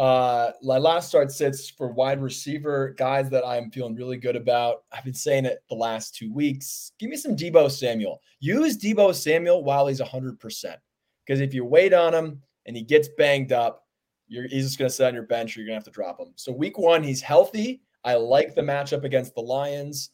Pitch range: 125-170 Hz